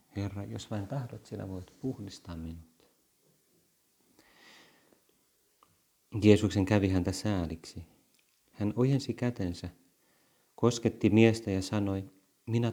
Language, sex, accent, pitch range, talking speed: Finnish, male, native, 90-110 Hz, 95 wpm